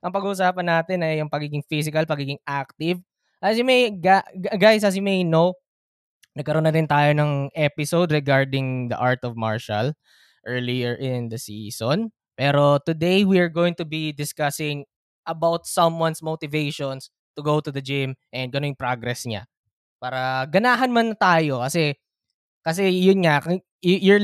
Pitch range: 135-180 Hz